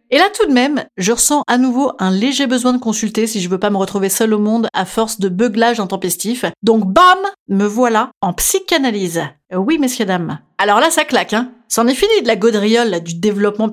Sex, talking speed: female, 220 wpm